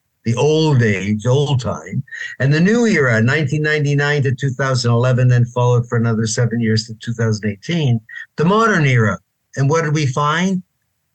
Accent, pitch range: American, 120-155 Hz